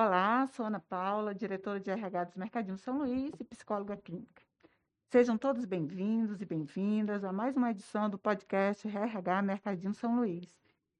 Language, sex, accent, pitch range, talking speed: Portuguese, female, Brazilian, 185-235 Hz, 160 wpm